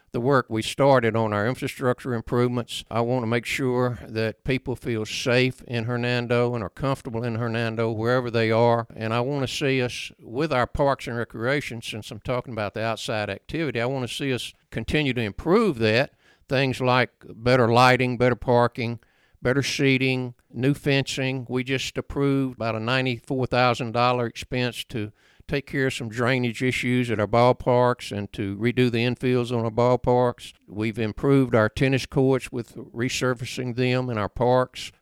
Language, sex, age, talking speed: English, male, 60-79, 170 wpm